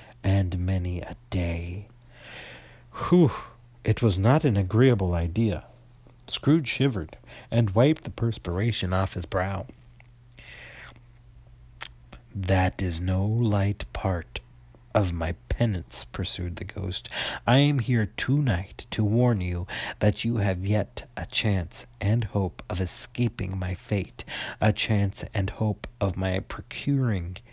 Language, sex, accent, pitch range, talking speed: English, male, American, 95-120 Hz, 125 wpm